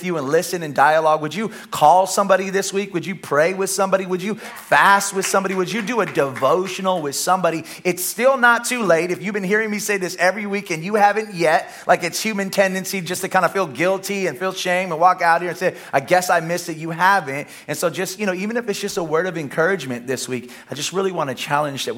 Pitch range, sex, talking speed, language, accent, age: 160-210 Hz, male, 255 wpm, English, American, 30-49